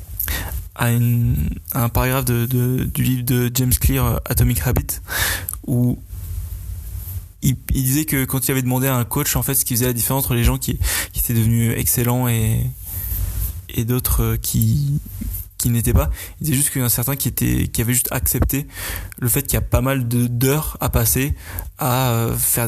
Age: 20-39